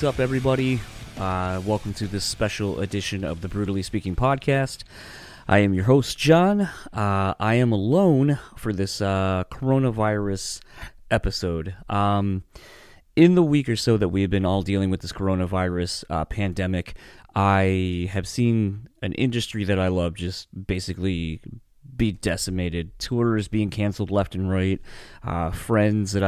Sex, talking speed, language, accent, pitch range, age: male, 145 wpm, English, American, 95-110 Hz, 30-49